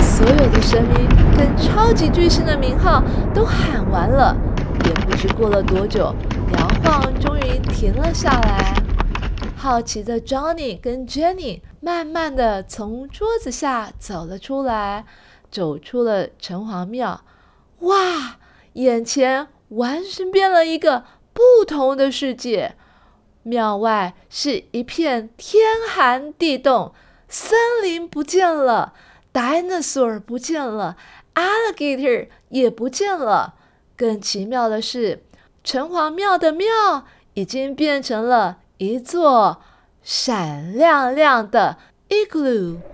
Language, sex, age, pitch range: Chinese, female, 20-39, 225-320 Hz